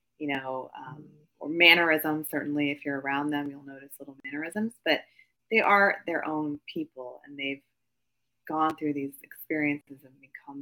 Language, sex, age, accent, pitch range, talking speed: English, female, 20-39, American, 135-150 Hz, 160 wpm